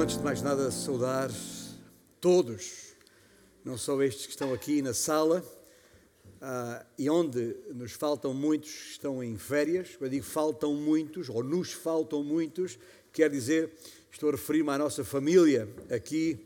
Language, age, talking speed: Portuguese, 50-69, 150 wpm